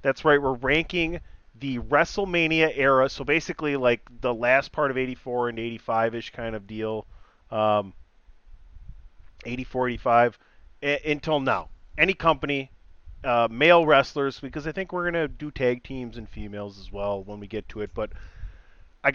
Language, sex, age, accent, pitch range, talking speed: English, male, 30-49, American, 110-145 Hz, 155 wpm